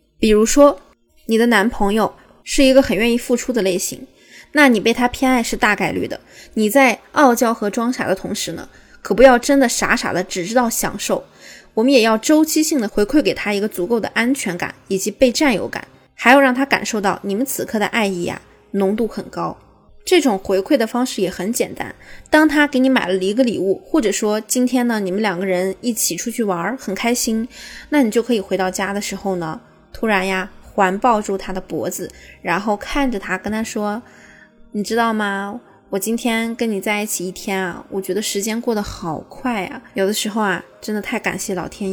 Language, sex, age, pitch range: Chinese, female, 20-39, 190-245 Hz